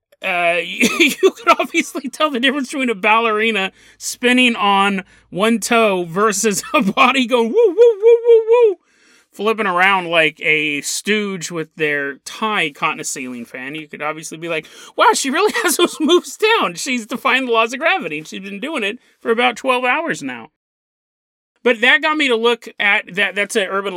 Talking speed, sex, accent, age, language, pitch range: 190 wpm, male, American, 30-49, English, 190-295 Hz